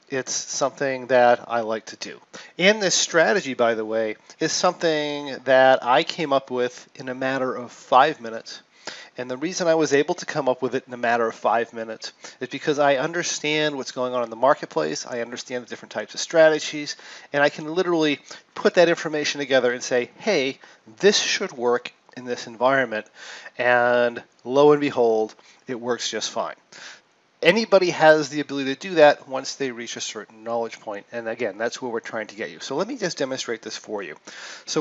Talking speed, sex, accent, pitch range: 200 wpm, male, American, 120-155 Hz